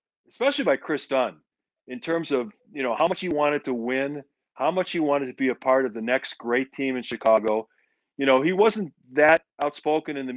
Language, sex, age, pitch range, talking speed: English, male, 40-59, 120-155 Hz, 220 wpm